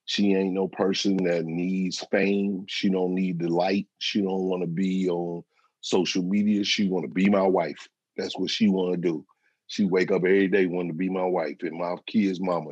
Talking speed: 215 wpm